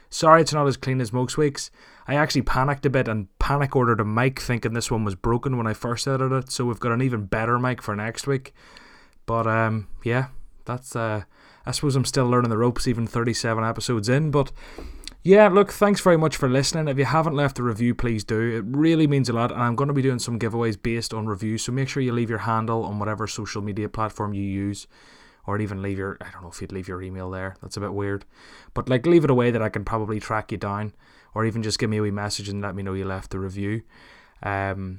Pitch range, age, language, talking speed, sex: 110-140 Hz, 20-39, English, 250 wpm, male